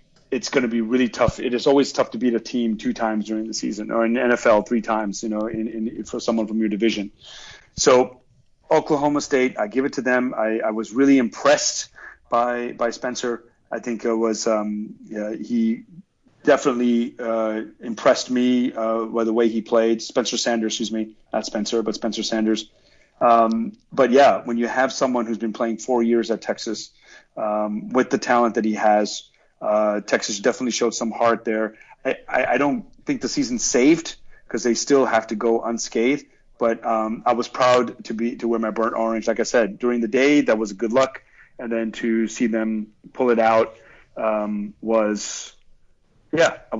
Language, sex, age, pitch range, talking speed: English, male, 30-49, 110-125 Hz, 195 wpm